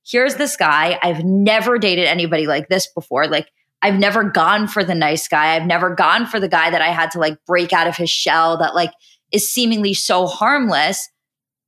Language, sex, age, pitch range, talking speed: English, female, 20-39, 170-220 Hz, 205 wpm